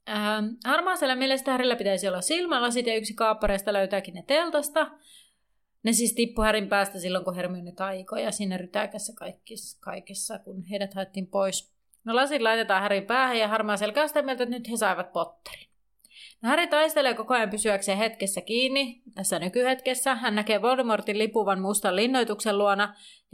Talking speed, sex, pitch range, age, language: 160 wpm, female, 195-250 Hz, 30-49, Finnish